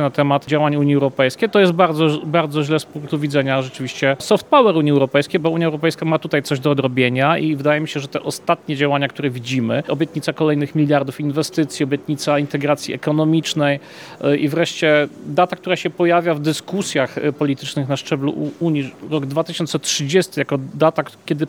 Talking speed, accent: 170 wpm, native